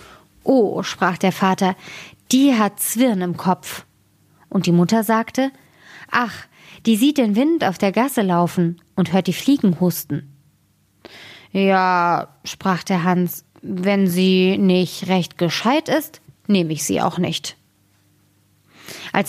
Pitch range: 175-220 Hz